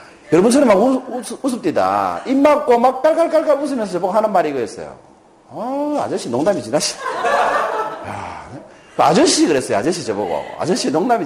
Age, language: 40-59, Korean